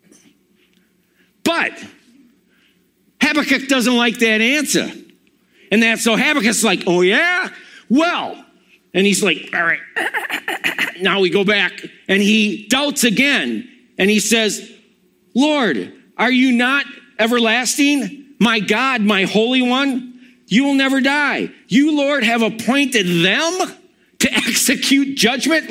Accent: American